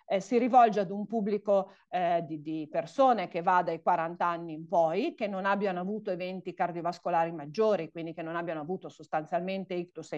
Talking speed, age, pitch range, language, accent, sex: 190 wpm, 40-59, 180-240 Hz, Italian, native, female